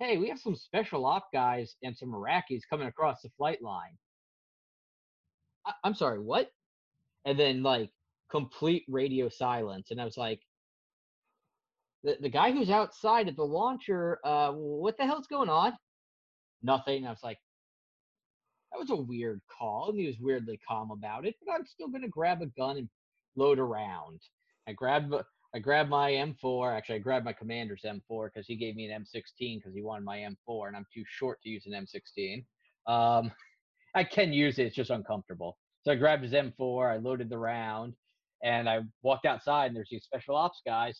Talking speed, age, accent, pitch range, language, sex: 190 wpm, 30-49, American, 110-155 Hz, English, male